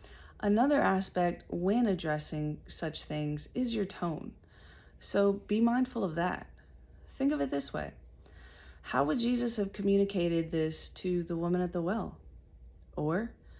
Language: English